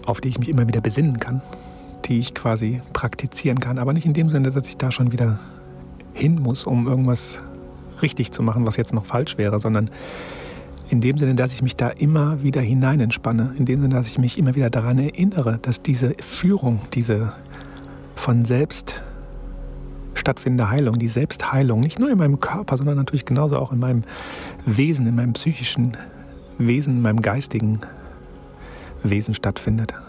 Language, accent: German, German